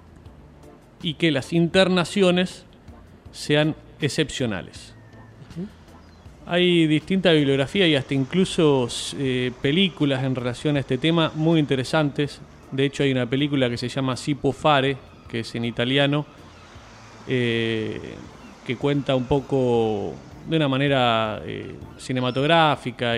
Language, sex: Spanish, male